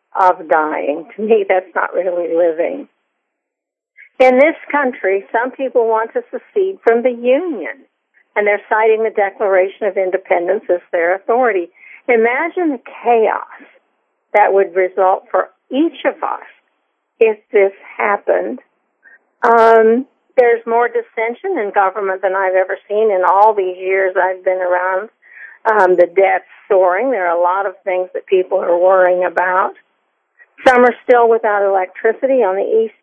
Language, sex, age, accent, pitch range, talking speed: English, female, 50-69, American, 200-275 Hz, 150 wpm